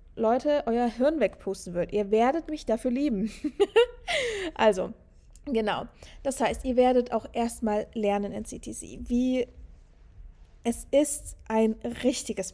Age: 20-39